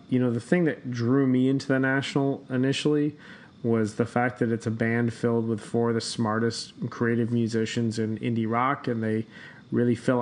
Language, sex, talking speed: English, male, 195 wpm